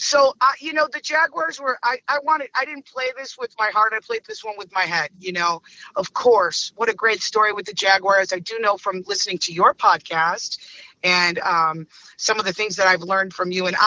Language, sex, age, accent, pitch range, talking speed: English, female, 30-49, American, 180-235 Hz, 240 wpm